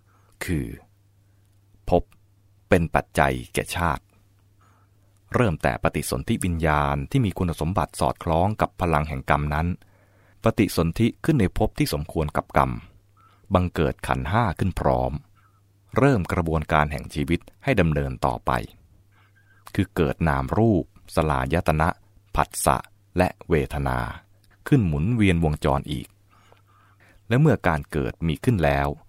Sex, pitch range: male, 75-100 Hz